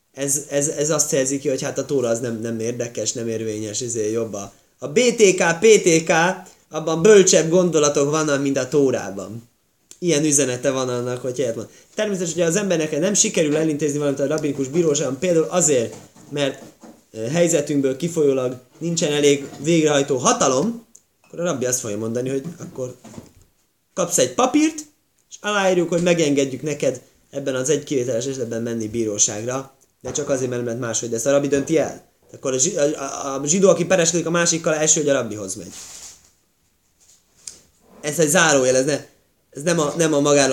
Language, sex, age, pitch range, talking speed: Hungarian, male, 20-39, 130-180 Hz, 165 wpm